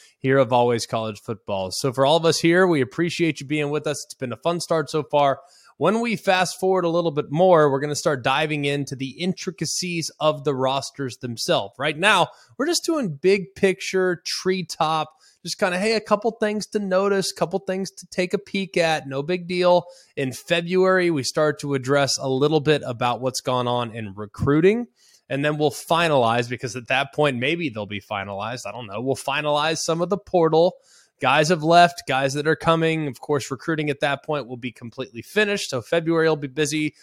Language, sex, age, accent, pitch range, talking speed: English, male, 20-39, American, 130-170 Hz, 210 wpm